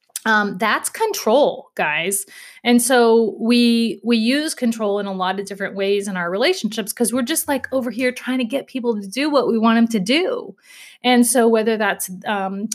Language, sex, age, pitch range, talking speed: English, female, 30-49, 205-255 Hz, 195 wpm